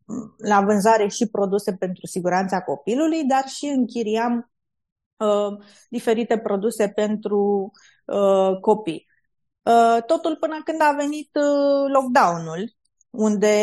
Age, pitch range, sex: 20-39, 205-265 Hz, female